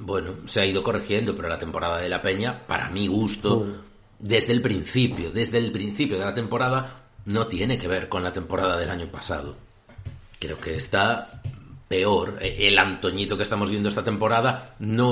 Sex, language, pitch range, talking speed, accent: male, Spanish, 100-125 Hz, 180 wpm, Spanish